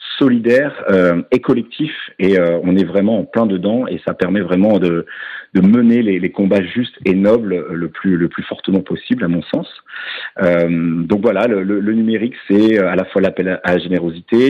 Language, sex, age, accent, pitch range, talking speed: French, male, 40-59, French, 90-115 Hz, 200 wpm